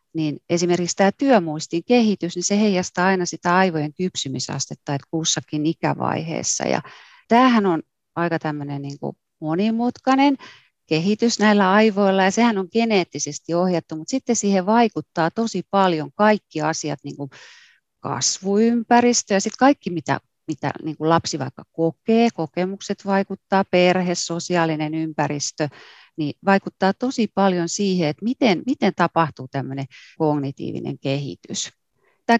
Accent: native